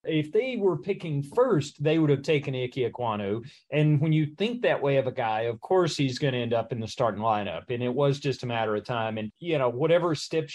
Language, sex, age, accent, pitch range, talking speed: English, male, 40-59, American, 130-155 Hz, 250 wpm